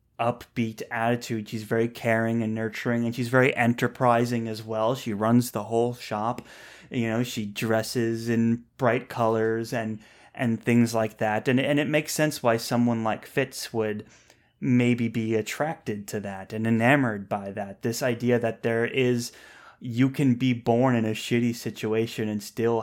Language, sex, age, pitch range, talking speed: English, male, 20-39, 110-125 Hz, 170 wpm